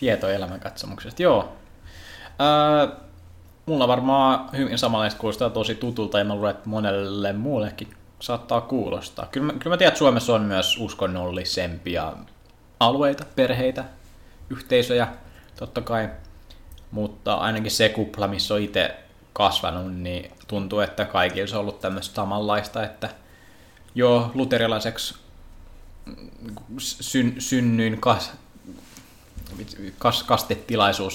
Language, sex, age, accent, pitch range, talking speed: Finnish, male, 20-39, native, 95-115 Hz, 110 wpm